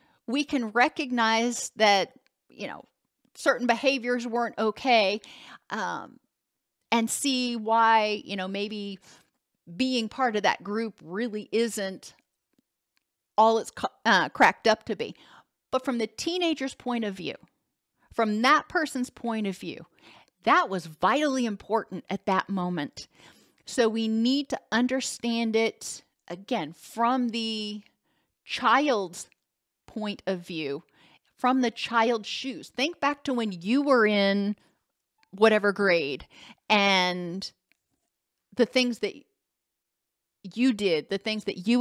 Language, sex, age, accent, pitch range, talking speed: English, female, 40-59, American, 200-250 Hz, 125 wpm